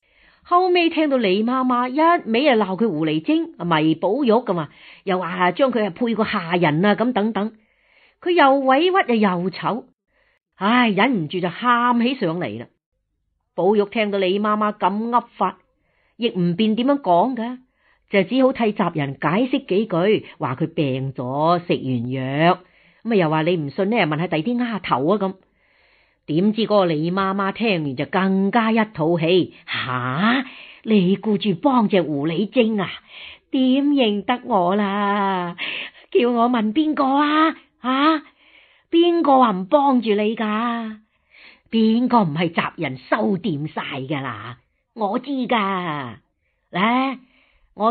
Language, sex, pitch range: Chinese, female, 175-245 Hz